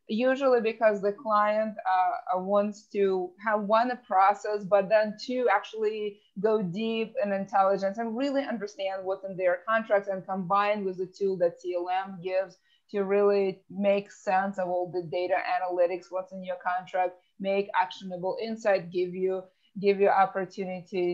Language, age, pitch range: English, 20-39, 185-220 Hz